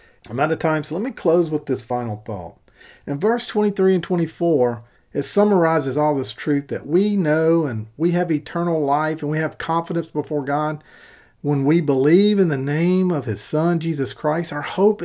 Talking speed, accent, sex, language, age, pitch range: 195 wpm, American, male, English, 50-69, 150-205 Hz